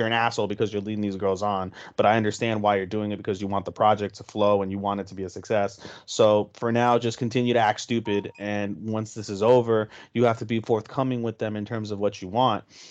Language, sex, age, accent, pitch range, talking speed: English, male, 30-49, American, 105-130 Hz, 265 wpm